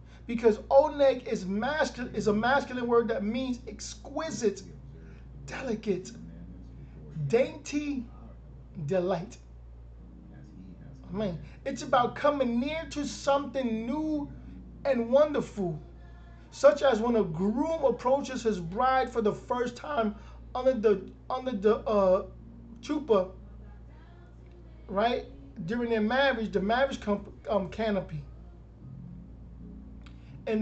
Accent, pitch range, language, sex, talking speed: American, 185-255 Hz, English, male, 105 wpm